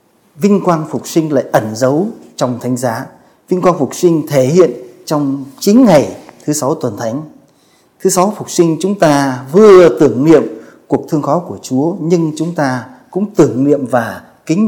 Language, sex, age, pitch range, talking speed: Vietnamese, male, 20-39, 130-175 Hz, 185 wpm